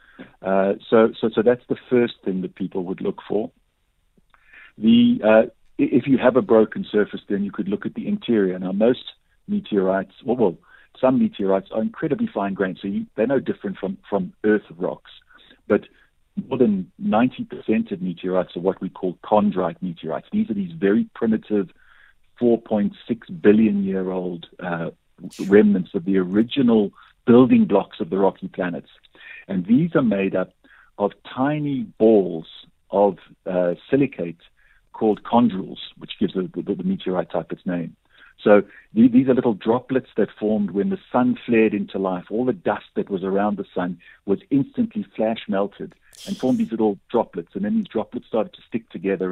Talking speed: 170 wpm